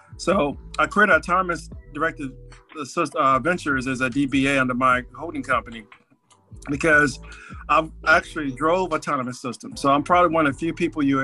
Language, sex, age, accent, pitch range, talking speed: English, male, 40-59, American, 130-155 Hz, 160 wpm